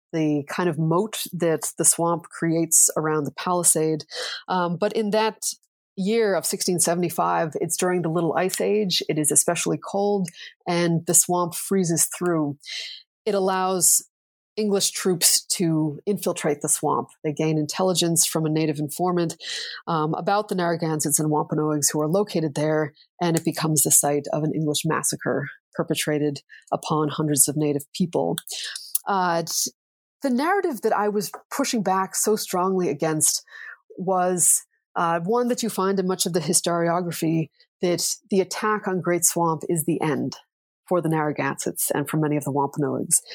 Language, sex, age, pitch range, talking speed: English, female, 30-49, 155-190 Hz, 155 wpm